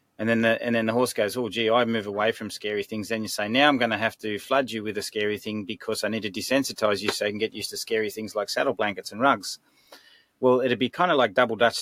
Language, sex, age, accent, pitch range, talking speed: English, male, 30-49, Australian, 105-120 Hz, 285 wpm